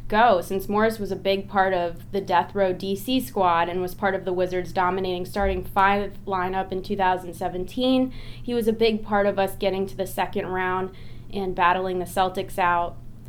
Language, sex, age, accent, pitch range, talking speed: English, female, 20-39, American, 185-225 Hz, 190 wpm